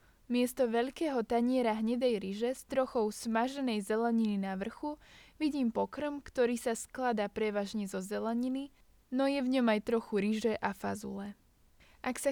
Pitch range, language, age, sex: 215-255 Hz, Slovak, 20-39, female